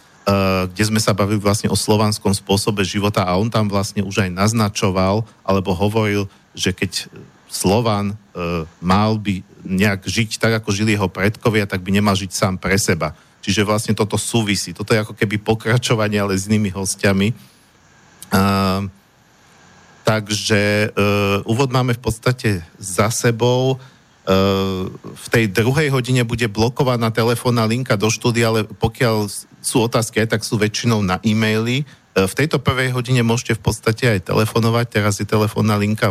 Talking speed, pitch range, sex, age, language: 160 wpm, 100-115 Hz, male, 50-69, Slovak